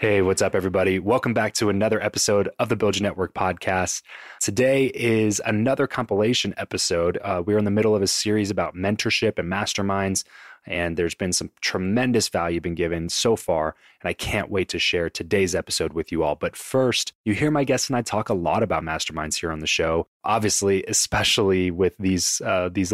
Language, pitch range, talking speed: English, 90-110 Hz, 195 wpm